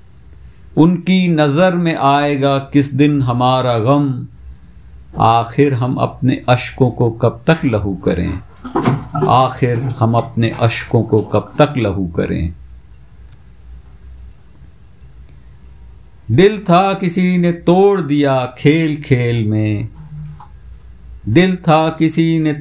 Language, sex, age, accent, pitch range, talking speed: Hindi, male, 50-69, native, 90-145 Hz, 105 wpm